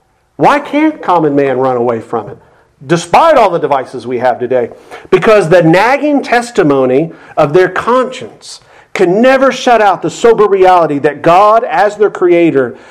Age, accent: 50-69, American